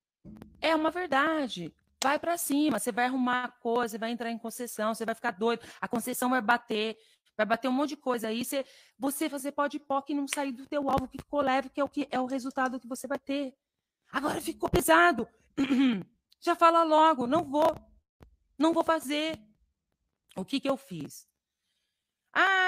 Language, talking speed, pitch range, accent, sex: Portuguese, 195 wpm, 205-285 Hz, Brazilian, female